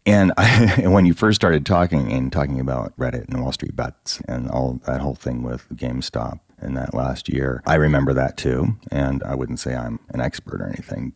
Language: English